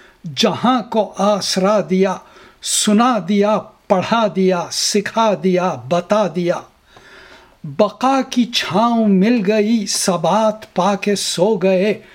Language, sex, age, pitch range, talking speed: Urdu, male, 60-79, 185-220 Hz, 110 wpm